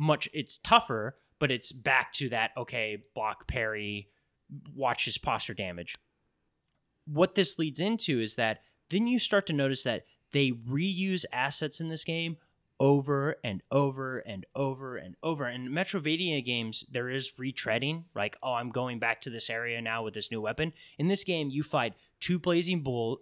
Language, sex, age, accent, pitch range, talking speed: English, male, 20-39, American, 120-165 Hz, 175 wpm